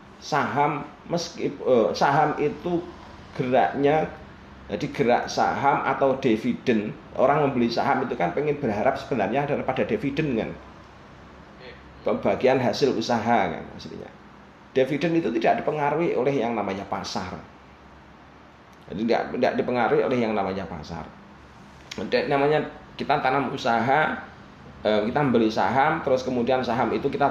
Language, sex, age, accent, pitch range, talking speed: Indonesian, male, 30-49, native, 110-150 Hz, 125 wpm